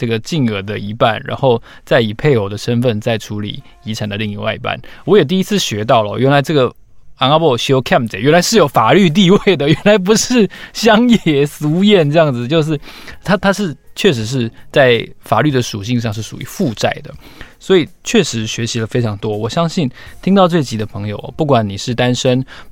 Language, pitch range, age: Chinese, 110-150 Hz, 20-39